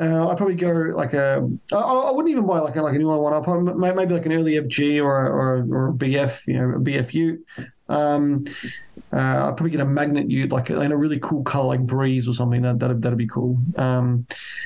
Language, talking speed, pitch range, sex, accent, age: English, 240 wpm, 135-175 Hz, male, Australian, 20-39